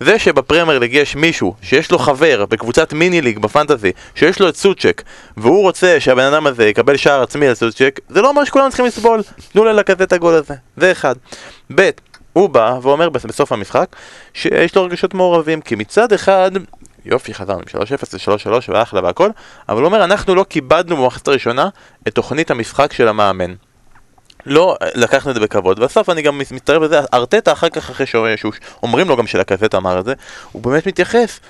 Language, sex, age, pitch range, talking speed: Hebrew, male, 20-39, 115-170 Hz, 180 wpm